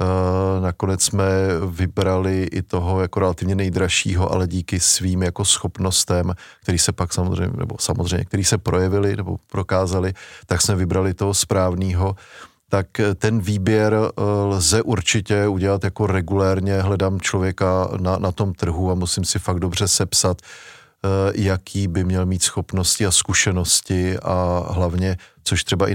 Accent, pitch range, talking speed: native, 90-100 Hz, 140 wpm